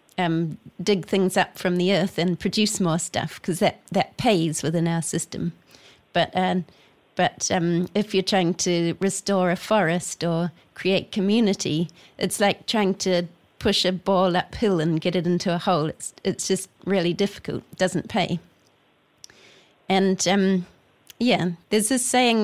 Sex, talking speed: female, 160 wpm